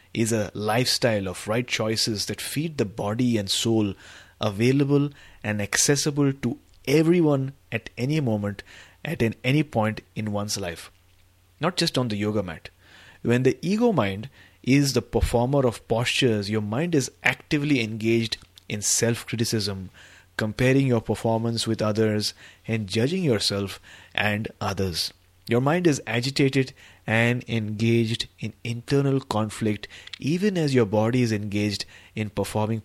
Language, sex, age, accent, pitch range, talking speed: English, male, 30-49, Indian, 100-130 Hz, 135 wpm